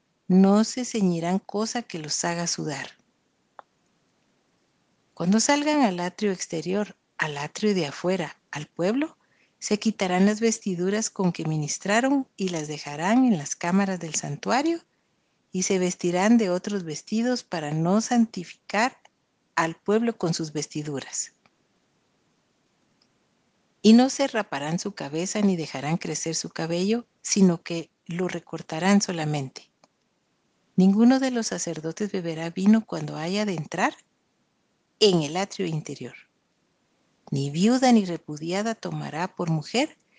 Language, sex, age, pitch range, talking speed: Spanish, female, 50-69, 165-220 Hz, 125 wpm